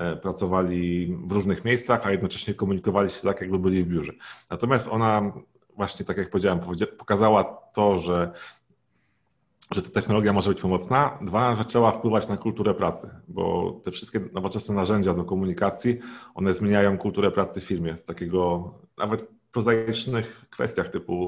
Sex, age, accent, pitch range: male, 40-59, native, 90-105 Hz